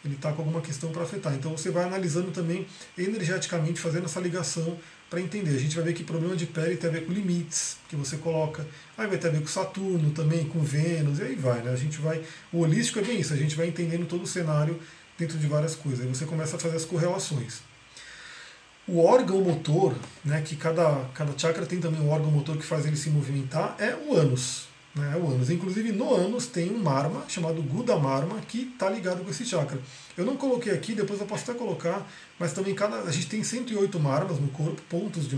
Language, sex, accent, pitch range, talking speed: Portuguese, male, Brazilian, 150-185 Hz, 225 wpm